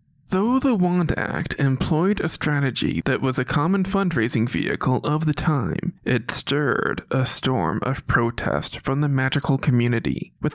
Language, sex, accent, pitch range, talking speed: English, male, American, 130-160 Hz, 155 wpm